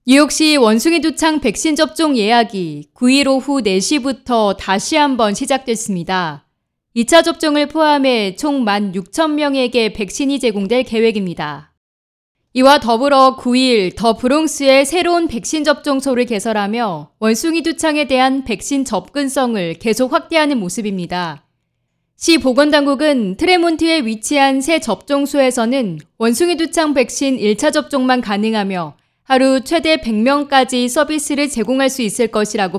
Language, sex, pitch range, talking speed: German, female, 210-280 Hz, 100 wpm